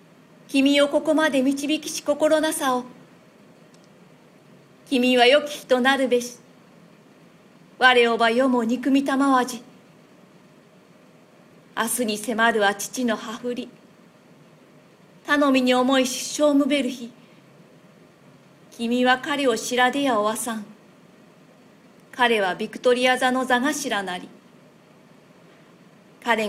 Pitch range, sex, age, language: 215-260 Hz, female, 40-59, Japanese